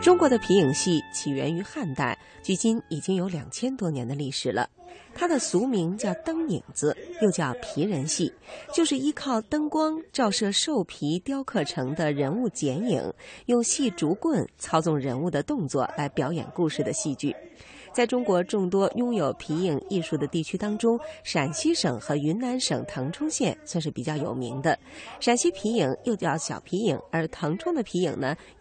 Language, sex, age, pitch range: Chinese, female, 30-49, 150-235 Hz